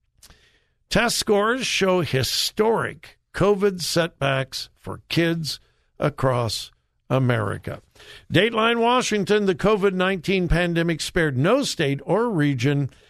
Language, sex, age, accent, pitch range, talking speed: English, male, 60-79, American, 130-195 Hz, 90 wpm